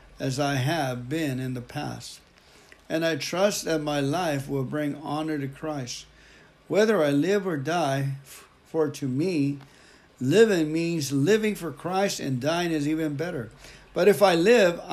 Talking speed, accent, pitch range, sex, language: 160 wpm, American, 135-160 Hz, male, English